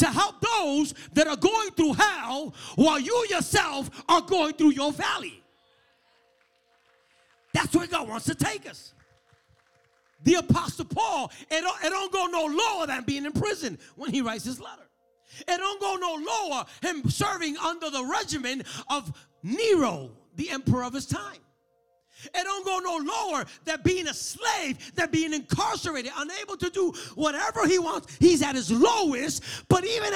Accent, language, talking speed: American, English, 165 wpm